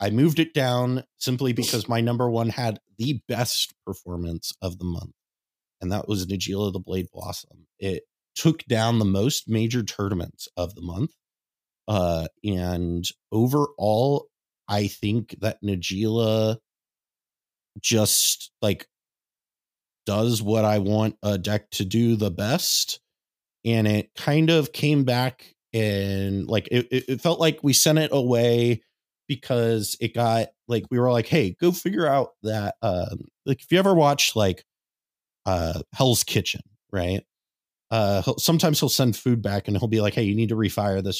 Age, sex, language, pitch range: 30-49, male, English, 95-125 Hz